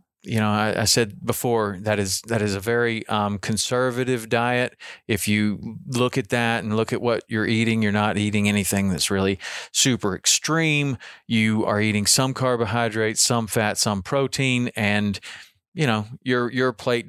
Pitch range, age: 100-115 Hz, 40-59